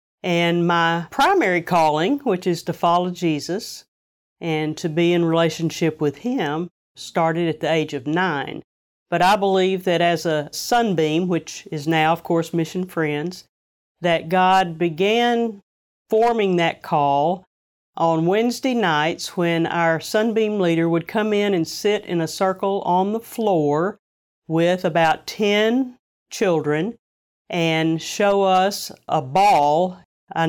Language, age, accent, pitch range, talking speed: English, 50-69, American, 165-195 Hz, 140 wpm